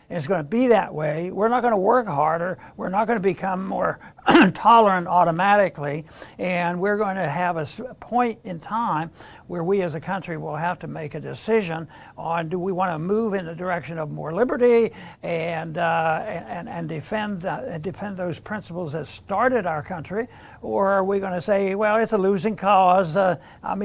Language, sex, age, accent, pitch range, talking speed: English, male, 60-79, American, 170-200 Hz, 195 wpm